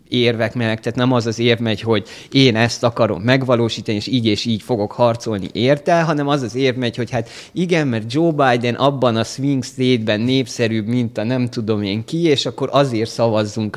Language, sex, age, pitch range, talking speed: Hungarian, male, 30-49, 110-135 Hz, 200 wpm